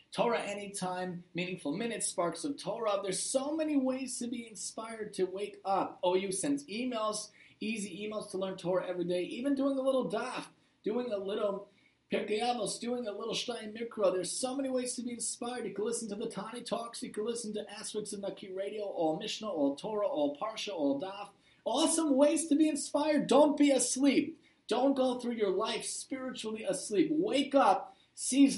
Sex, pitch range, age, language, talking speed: male, 185-245 Hz, 30-49, English, 185 wpm